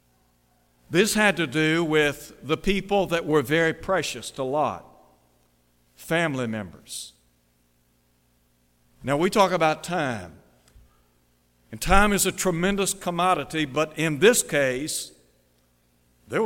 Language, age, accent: English, 60-79, American